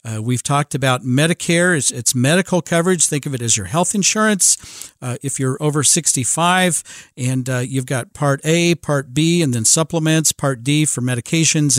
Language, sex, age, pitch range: English, male, 50-69, 135-170 Hz